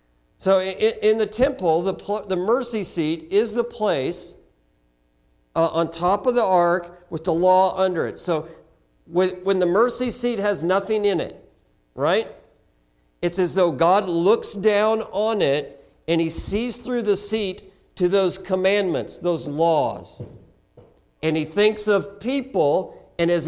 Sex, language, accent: male, English, American